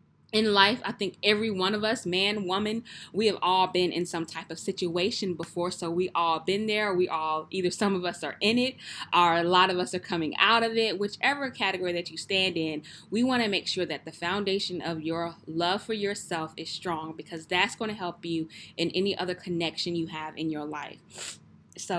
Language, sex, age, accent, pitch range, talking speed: English, female, 20-39, American, 170-215 Hz, 220 wpm